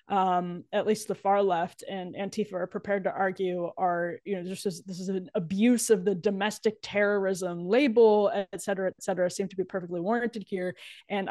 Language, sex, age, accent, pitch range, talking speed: English, female, 20-39, American, 190-220 Hz, 195 wpm